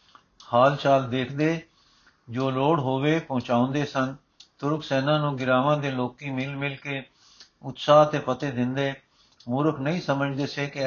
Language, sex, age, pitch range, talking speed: Punjabi, male, 60-79, 130-150 Hz, 150 wpm